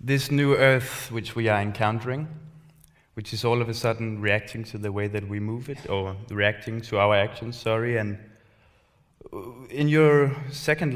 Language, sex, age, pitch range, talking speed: English, male, 20-39, 110-140 Hz, 170 wpm